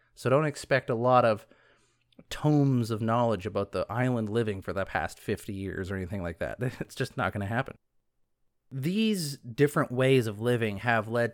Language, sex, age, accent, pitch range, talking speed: English, male, 30-49, American, 105-135 Hz, 185 wpm